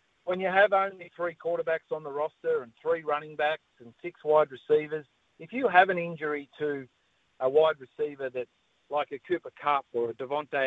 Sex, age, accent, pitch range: male, 50-69, Australian, 140-175 Hz